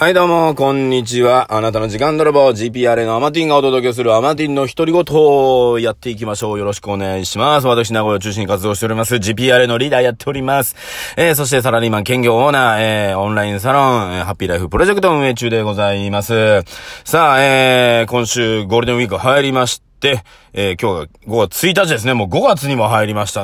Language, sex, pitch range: Japanese, male, 105-140 Hz